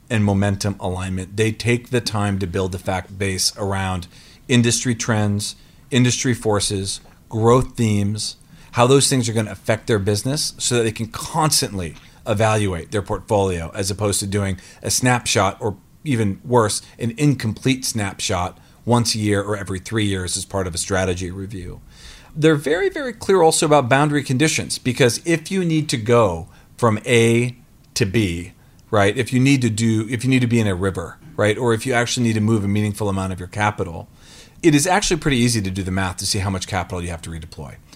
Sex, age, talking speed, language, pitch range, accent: male, 40-59, 195 wpm, English, 100-125 Hz, American